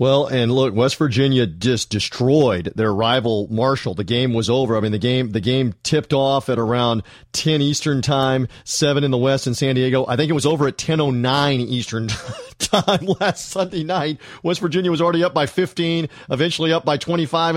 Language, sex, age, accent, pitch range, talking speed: English, male, 40-59, American, 130-165 Hz, 200 wpm